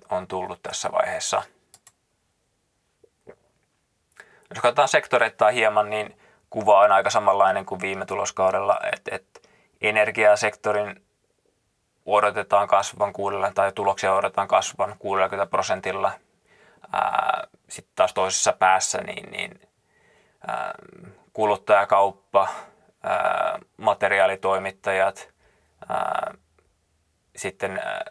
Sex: male